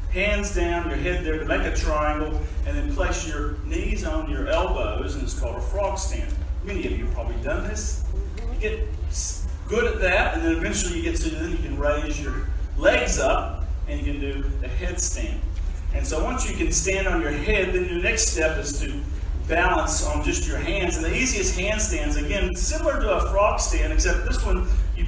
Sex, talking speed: male, 210 wpm